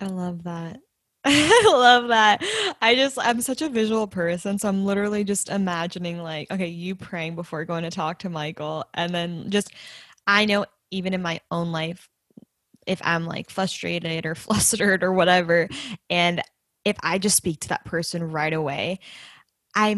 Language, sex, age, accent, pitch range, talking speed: English, female, 10-29, American, 175-220 Hz, 170 wpm